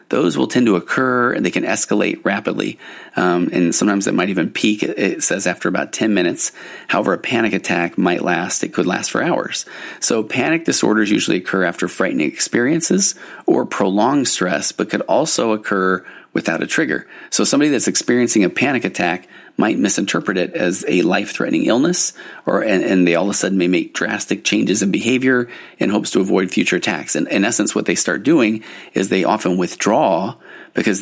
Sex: male